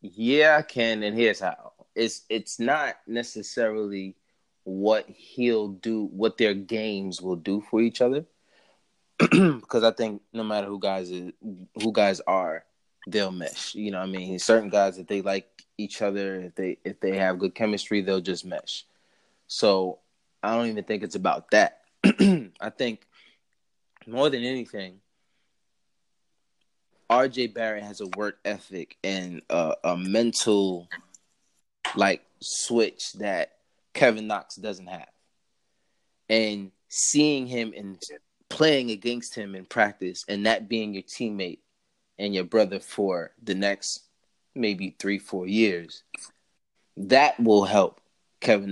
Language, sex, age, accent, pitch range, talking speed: English, male, 20-39, American, 95-110 Hz, 140 wpm